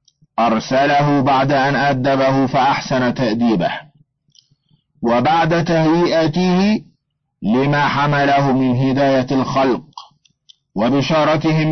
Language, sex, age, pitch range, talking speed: Arabic, male, 50-69, 130-155 Hz, 70 wpm